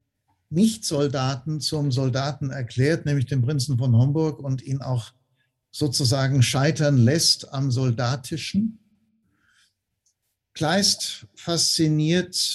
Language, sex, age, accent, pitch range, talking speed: German, male, 60-79, German, 125-155 Hz, 90 wpm